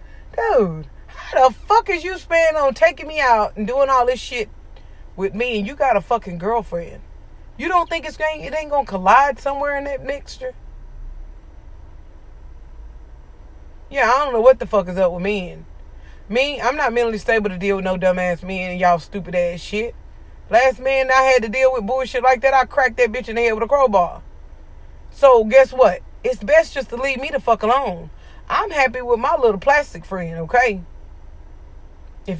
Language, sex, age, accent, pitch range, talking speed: English, female, 30-49, American, 180-265 Hz, 195 wpm